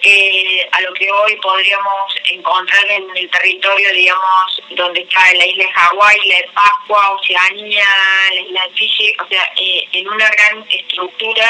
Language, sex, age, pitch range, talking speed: Spanish, female, 20-39, 185-225 Hz, 165 wpm